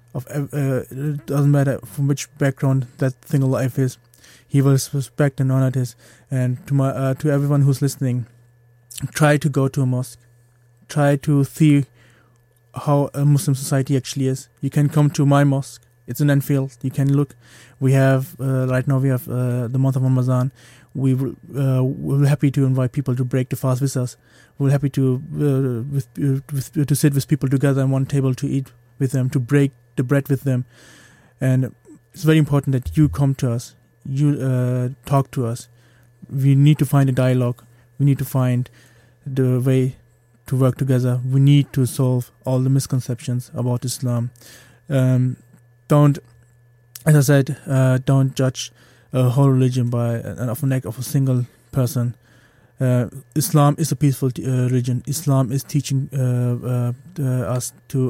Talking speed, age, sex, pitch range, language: 180 wpm, 20-39, male, 125-140 Hz, English